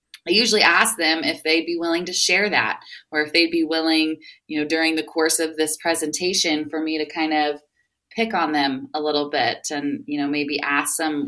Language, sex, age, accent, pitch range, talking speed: English, female, 20-39, American, 150-175 Hz, 220 wpm